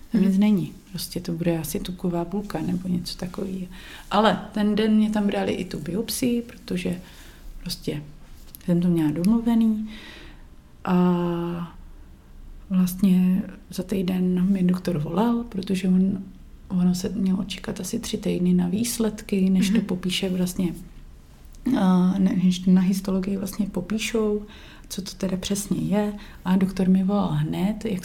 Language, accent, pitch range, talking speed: Czech, native, 175-210 Hz, 135 wpm